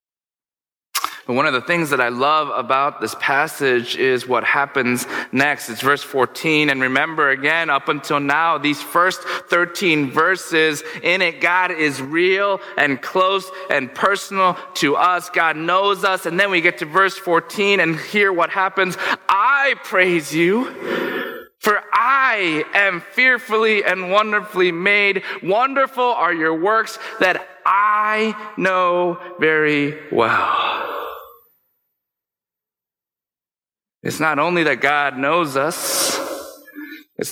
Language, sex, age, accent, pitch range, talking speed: English, male, 20-39, American, 145-195 Hz, 130 wpm